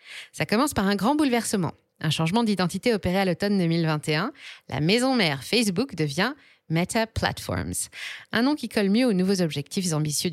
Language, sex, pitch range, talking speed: French, female, 165-235 Hz, 170 wpm